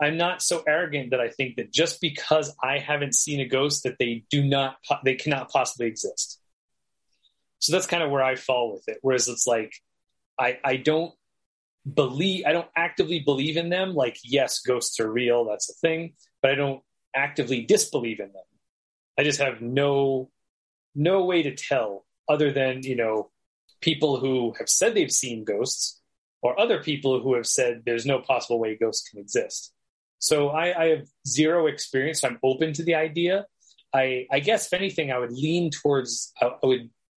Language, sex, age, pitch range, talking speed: English, male, 30-49, 125-160 Hz, 185 wpm